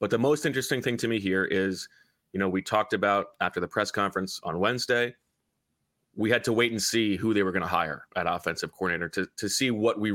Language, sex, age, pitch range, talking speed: English, male, 30-49, 95-110 Hz, 235 wpm